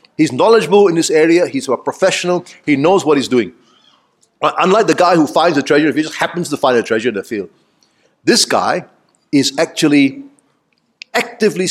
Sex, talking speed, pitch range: male, 185 wpm, 150-225 Hz